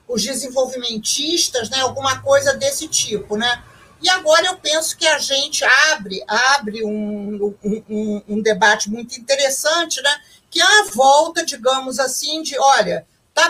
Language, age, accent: Portuguese, 50-69, Brazilian